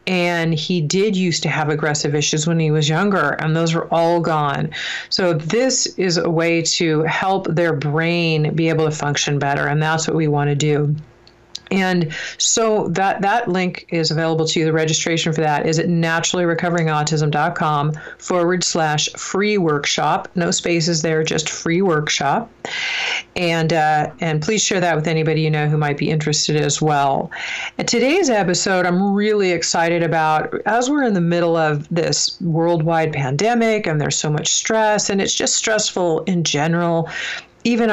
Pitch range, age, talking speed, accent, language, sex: 155-190 Hz, 40-59, 170 wpm, American, English, female